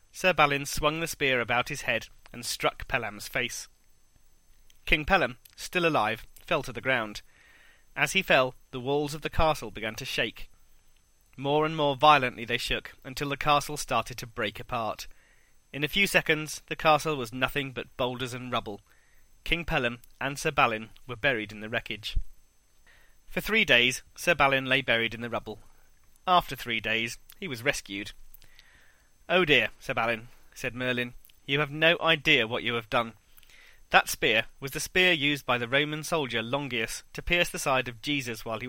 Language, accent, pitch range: English, British, 115-155 Hz